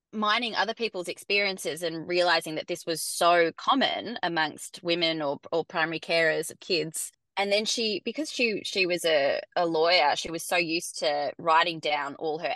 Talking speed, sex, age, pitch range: 180 wpm, female, 20-39, 160-185 Hz